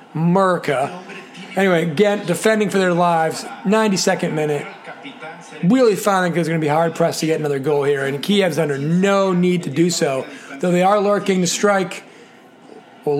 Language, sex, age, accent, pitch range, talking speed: English, male, 30-49, American, 150-195 Hz, 170 wpm